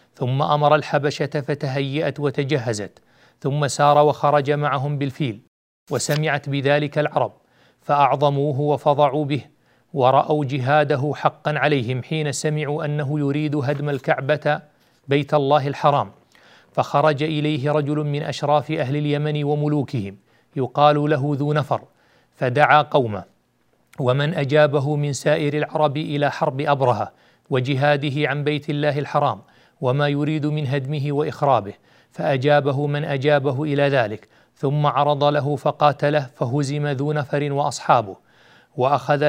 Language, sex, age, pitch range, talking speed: Arabic, male, 40-59, 140-150 Hz, 115 wpm